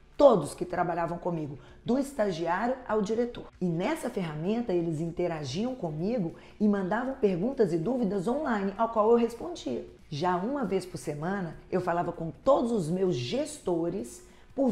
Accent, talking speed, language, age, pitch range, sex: Brazilian, 150 wpm, Portuguese, 40-59, 175-235 Hz, female